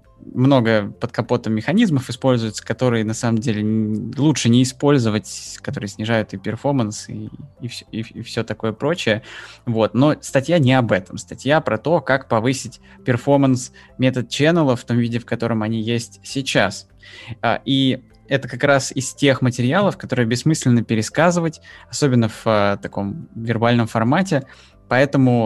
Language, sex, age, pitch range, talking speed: Russian, male, 20-39, 105-130 Hz, 155 wpm